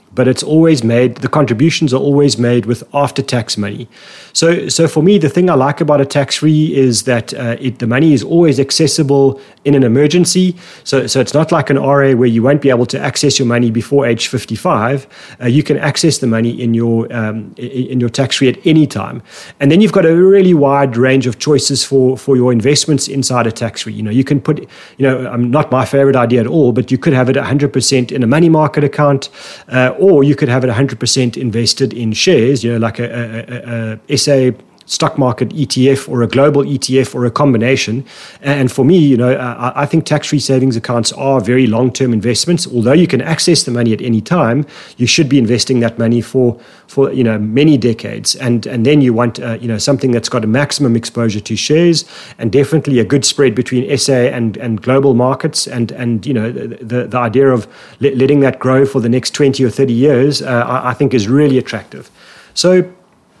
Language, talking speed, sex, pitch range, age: English, 220 wpm, male, 120-145 Hz, 30-49